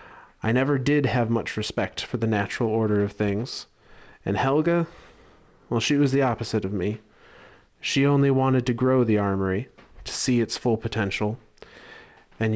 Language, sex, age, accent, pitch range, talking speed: English, male, 30-49, American, 105-130 Hz, 160 wpm